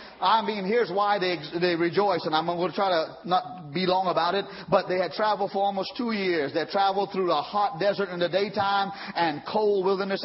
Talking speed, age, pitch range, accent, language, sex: 230 wpm, 40-59, 190-245 Hz, American, English, male